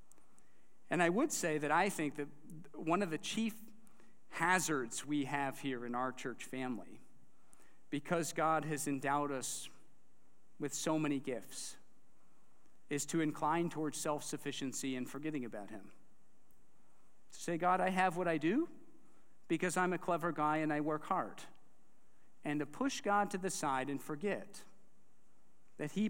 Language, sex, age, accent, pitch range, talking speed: English, male, 50-69, American, 145-180 Hz, 150 wpm